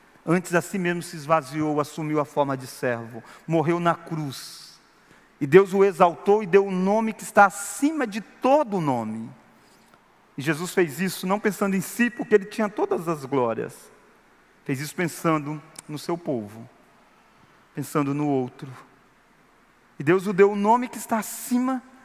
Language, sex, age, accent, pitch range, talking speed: Portuguese, male, 40-59, Brazilian, 155-215 Hz, 165 wpm